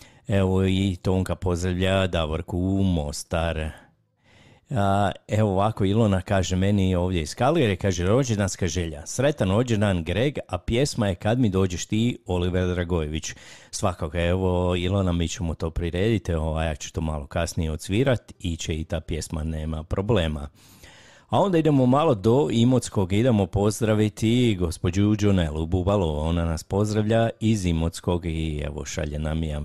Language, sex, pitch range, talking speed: Croatian, male, 85-110 Hz, 145 wpm